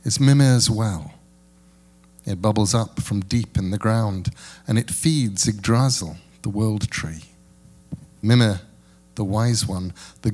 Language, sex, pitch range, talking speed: English, male, 90-125 Hz, 135 wpm